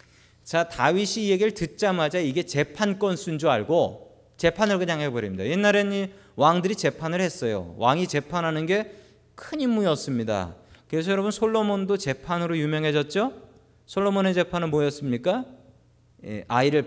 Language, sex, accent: Korean, male, native